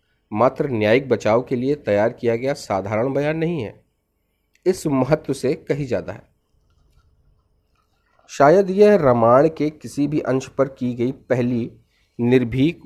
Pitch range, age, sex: 110-150 Hz, 40-59, male